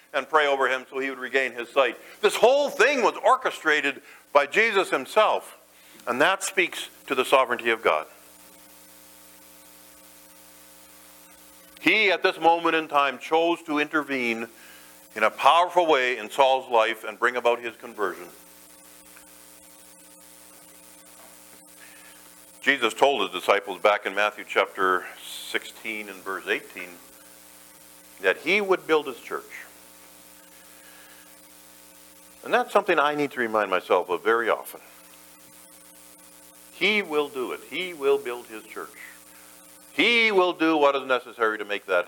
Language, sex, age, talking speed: English, male, 50-69, 135 wpm